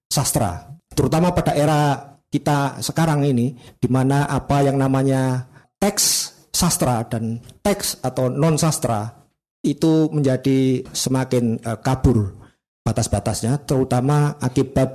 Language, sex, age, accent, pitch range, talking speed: Indonesian, male, 50-69, native, 120-150 Hz, 110 wpm